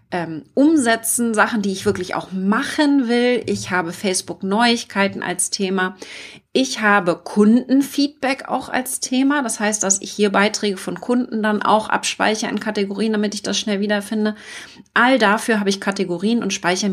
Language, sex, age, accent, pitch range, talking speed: German, female, 30-49, German, 195-245 Hz, 160 wpm